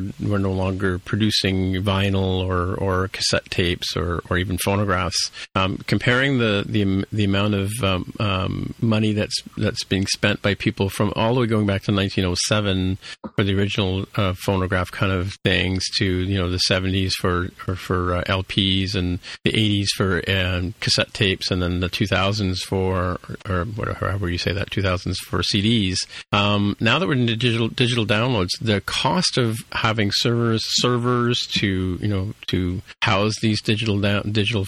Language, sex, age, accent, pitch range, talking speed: English, male, 40-59, American, 95-110 Hz, 175 wpm